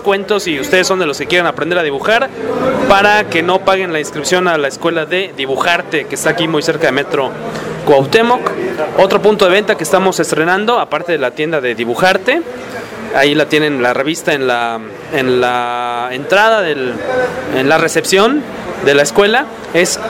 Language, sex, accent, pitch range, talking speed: English, male, Mexican, 155-205 Hz, 180 wpm